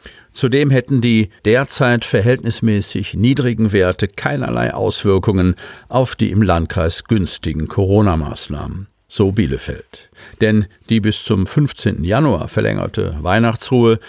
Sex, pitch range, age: male, 95-120 Hz, 50-69